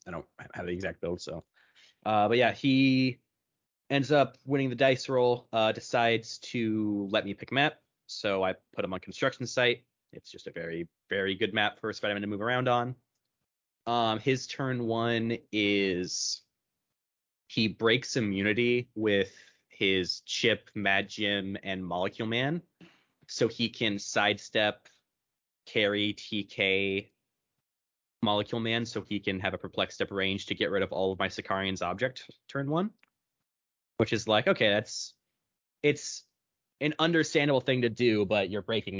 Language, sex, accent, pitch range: English, male, American, 95-120 Hz